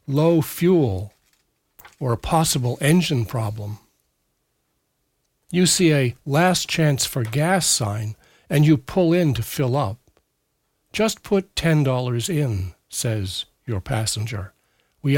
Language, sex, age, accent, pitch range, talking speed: English, male, 60-79, American, 115-155 Hz, 125 wpm